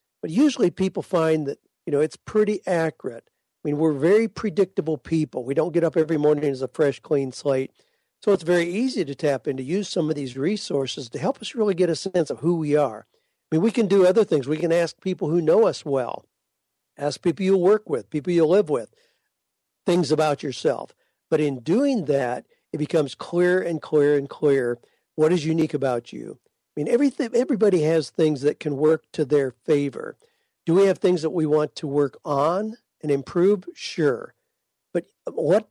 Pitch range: 150-190 Hz